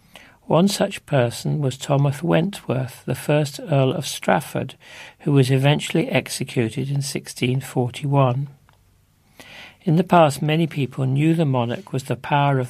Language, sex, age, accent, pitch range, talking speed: English, male, 60-79, British, 125-150 Hz, 135 wpm